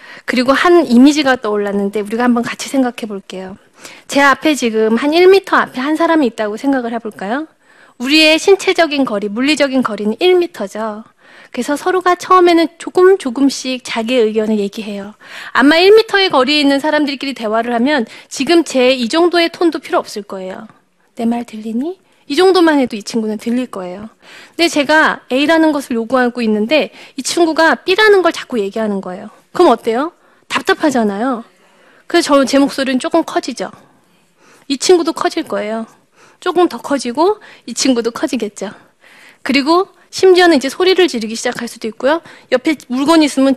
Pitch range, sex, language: 230-320 Hz, female, Korean